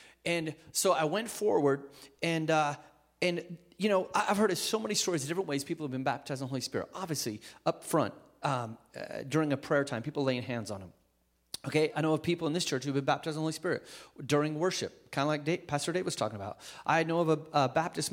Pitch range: 135-175 Hz